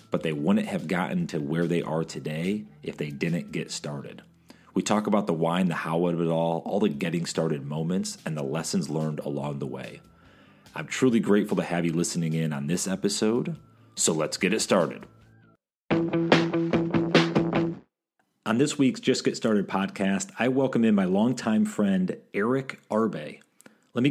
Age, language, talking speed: 30-49, English, 175 wpm